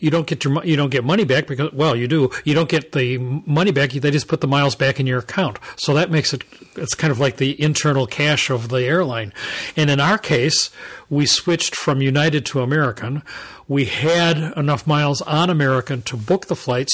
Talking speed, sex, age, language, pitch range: 220 wpm, male, 40-59, English, 135-160 Hz